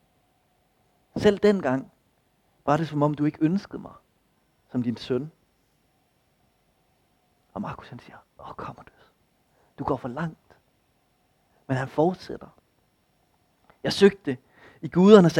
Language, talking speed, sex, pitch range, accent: Danish, 120 wpm, male, 140-185 Hz, native